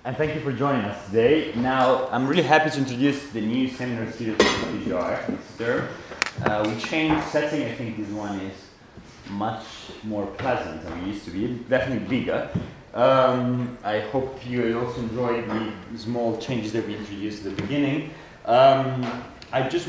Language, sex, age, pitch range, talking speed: English, male, 30-49, 100-125 Hz, 170 wpm